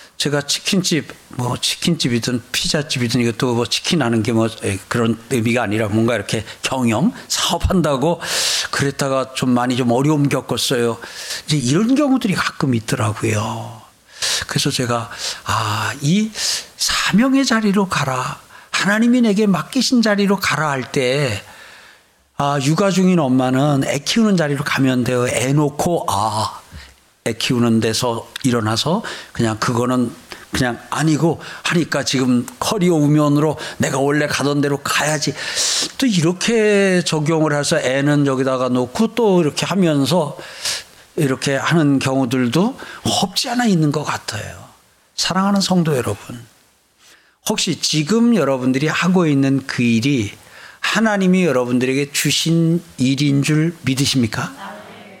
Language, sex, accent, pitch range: Korean, male, native, 125-170 Hz